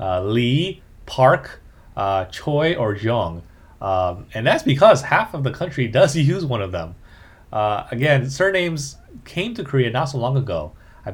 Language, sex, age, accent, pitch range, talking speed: English, male, 30-49, American, 95-135 Hz, 165 wpm